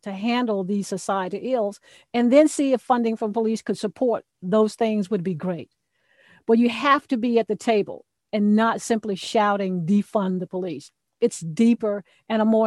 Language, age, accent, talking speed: English, 50-69, American, 185 wpm